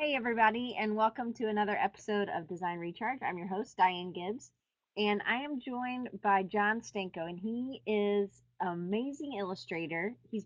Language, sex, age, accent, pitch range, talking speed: English, female, 30-49, American, 185-225 Hz, 165 wpm